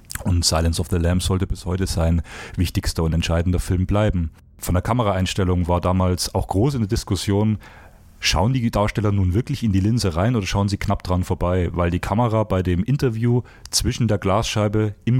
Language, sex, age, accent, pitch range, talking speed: German, male, 30-49, German, 90-115 Hz, 195 wpm